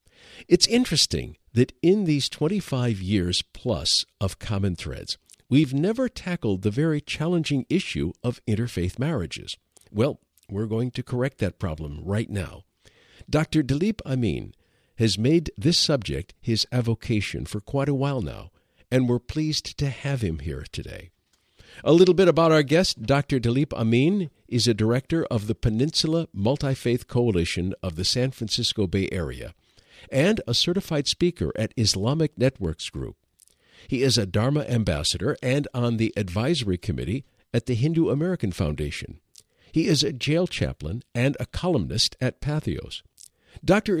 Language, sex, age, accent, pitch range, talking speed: English, male, 50-69, American, 100-150 Hz, 150 wpm